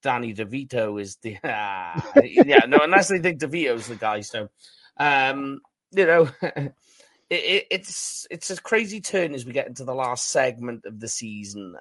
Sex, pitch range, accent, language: male, 115-165 Hz, British, English